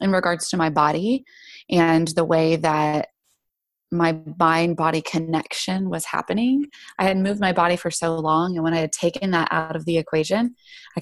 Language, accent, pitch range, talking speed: English, American, 160-200 Hz, 185 wpm